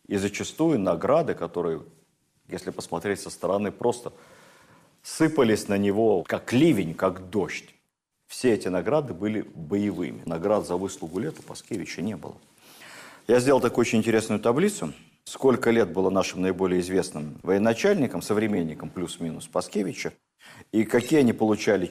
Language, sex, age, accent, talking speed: Russian, male, 50-69, native, 130 wpm